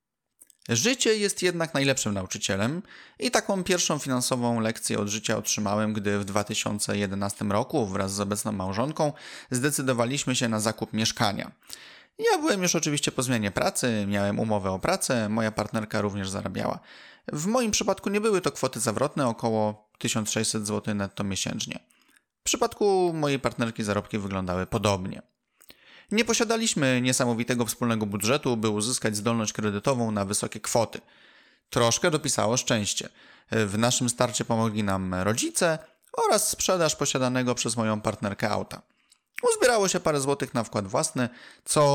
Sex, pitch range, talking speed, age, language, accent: male, 105-150 Hz, 140 wpm, 30-49, Polish, native